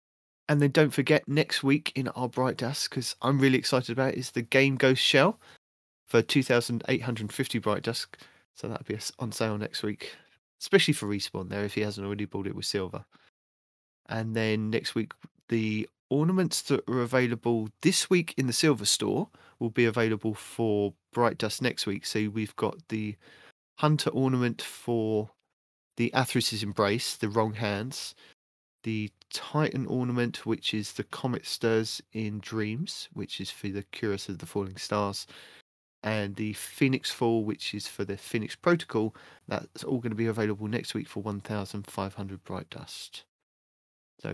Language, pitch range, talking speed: English, 105-130 Hz, 165 wpm